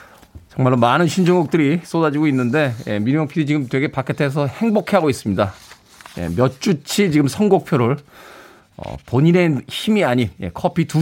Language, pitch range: Korean, 120-180 Hz